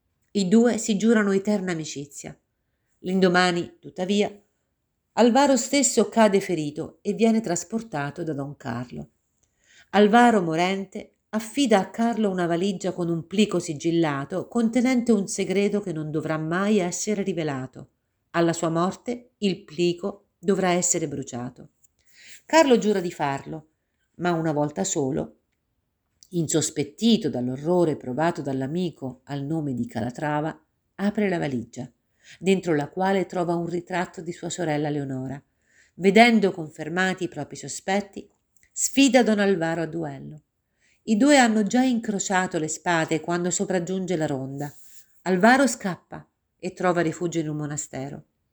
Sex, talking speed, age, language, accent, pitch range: female, 130 wpm, 50-69, Italian, native, 150-205 Hz